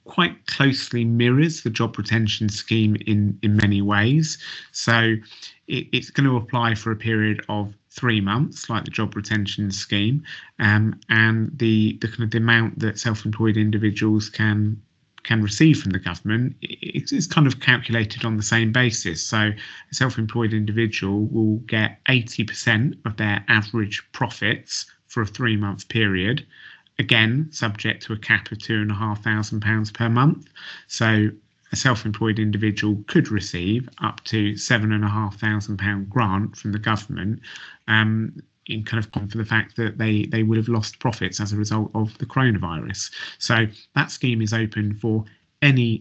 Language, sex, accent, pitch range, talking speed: English, male, British, 105-115 Hz, 155 wpm